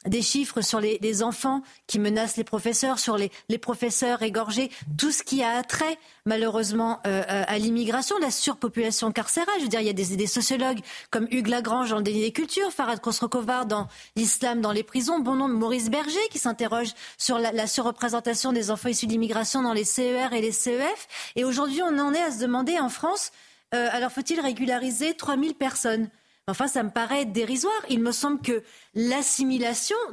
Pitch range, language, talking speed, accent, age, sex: 230-285 Hz, French, 195 wpm, French, 30-49, female